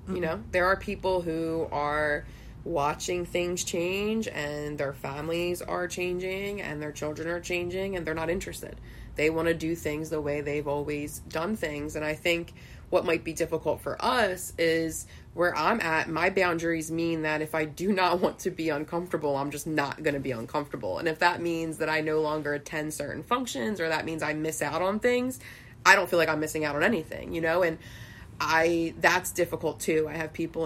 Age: 20-39